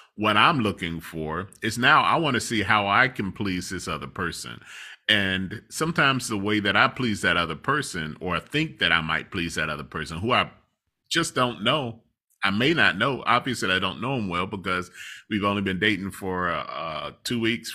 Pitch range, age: 90-120 Hz, 30-49